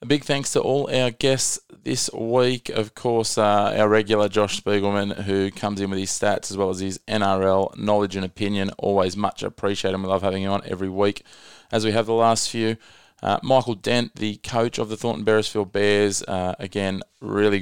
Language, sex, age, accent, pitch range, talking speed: English, male, 20-39, Australian, 100-110 Hz, 205 wpm